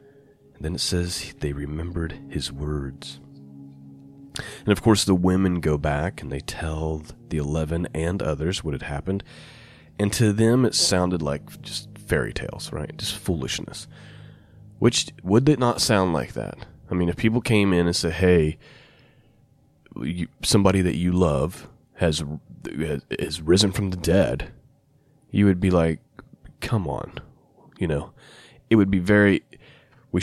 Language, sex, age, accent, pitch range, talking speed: English, male, 30-49, American, 80-110 Hz, 155 wpm